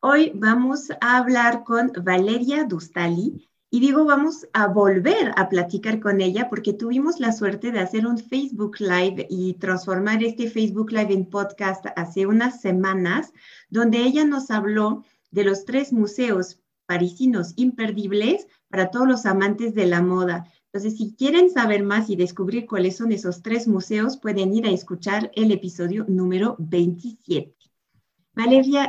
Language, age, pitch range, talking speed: Spanish, 30-49, 185-235 Hz, 150 wpm